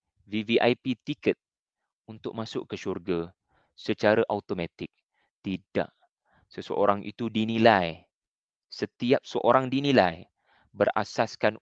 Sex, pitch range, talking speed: male, 105-135 Hz, 85 wpm